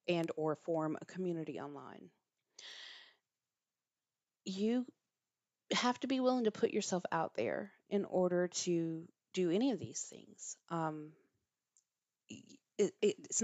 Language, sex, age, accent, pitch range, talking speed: English, female, 30-49, American, 160-195 Hz, 115 wpm